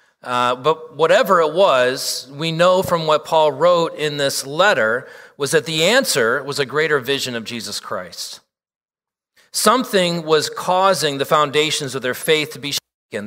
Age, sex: 40-59, male